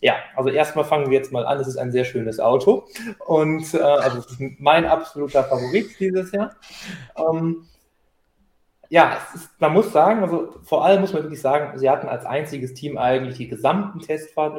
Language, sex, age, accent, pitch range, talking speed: German, male, 20-39, German, 125-160 Hz, 195 wpm